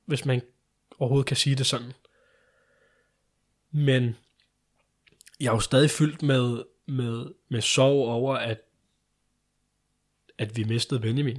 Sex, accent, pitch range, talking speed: male, native, 120-145 Hz, 120 wpm